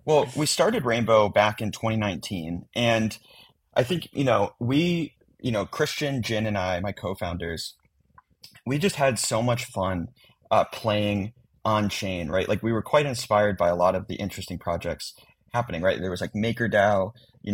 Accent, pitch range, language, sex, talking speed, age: American, 95-115 Hz, English, male, 175 wpm, 30-49